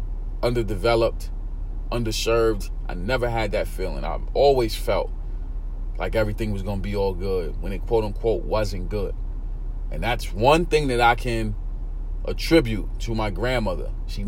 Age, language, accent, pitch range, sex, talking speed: 30-49, English, American, 95-120 Hz, male, 150 wpm